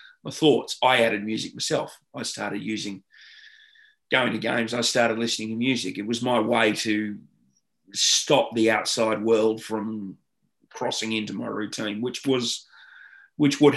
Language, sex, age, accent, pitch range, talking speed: English, male, 30-49, Australian, 110-125 Hz, 150 wpm